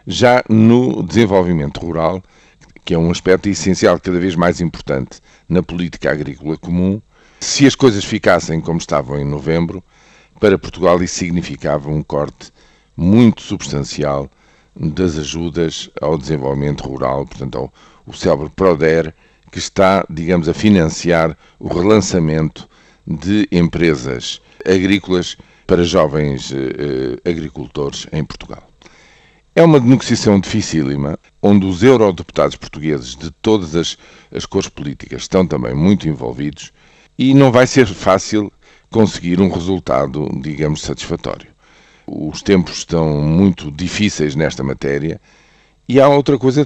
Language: Portuguese